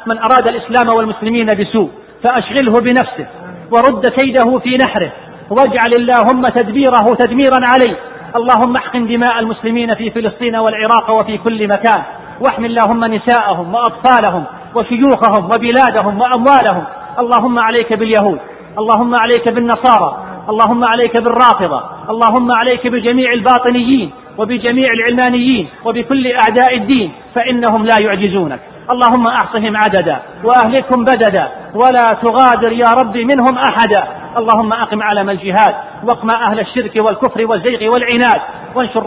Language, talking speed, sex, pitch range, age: Arabic, 115 wpm, male, 215-245 Hz, 40-59